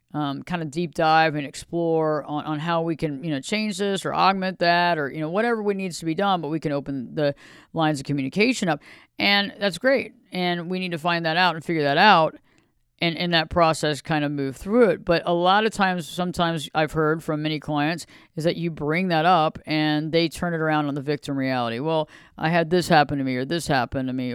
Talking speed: 240 wpm